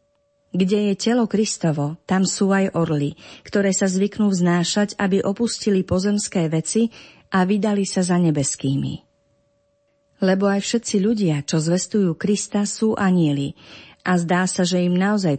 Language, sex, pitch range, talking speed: Slovak, female, 155-200 Hz, 140 wpm